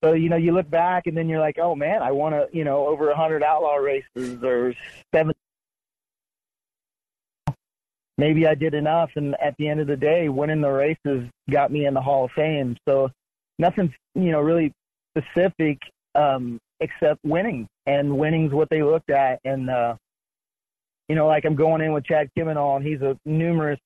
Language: English